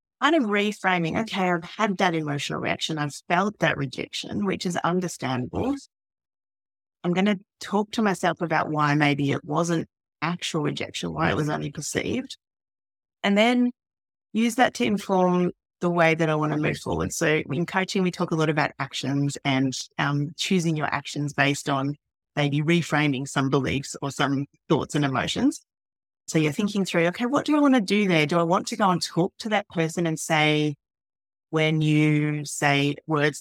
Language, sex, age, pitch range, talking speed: English, female, 30-49, 145-185 Hz, 180 wpm